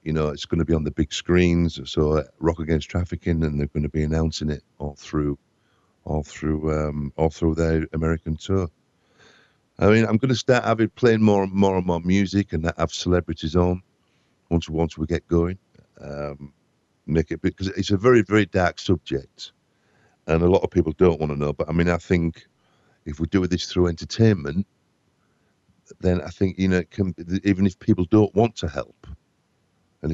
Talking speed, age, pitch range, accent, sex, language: 195 wpm, 50-69, 80-95 Hz, British, male, English